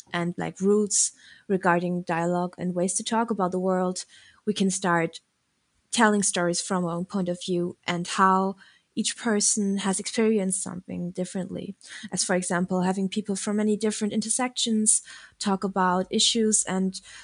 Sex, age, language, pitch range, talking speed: female, 20-39, English, 190-220 Hz, 155 wpm